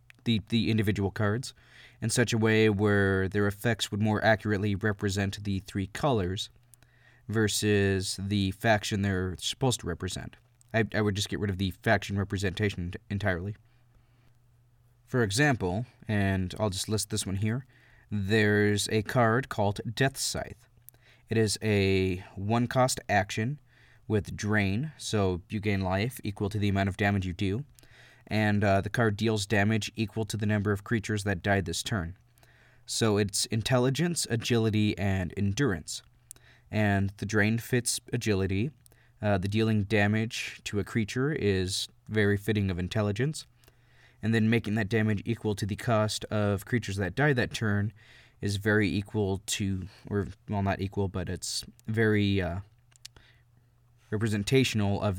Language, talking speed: English, 150 wpm